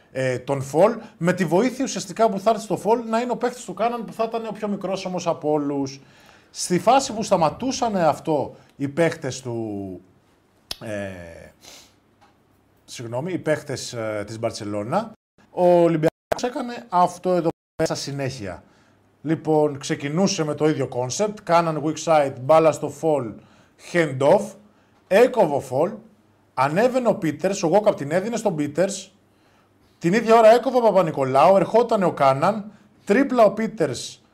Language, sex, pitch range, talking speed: Greek, male, 135-195 Hz, 145 wpm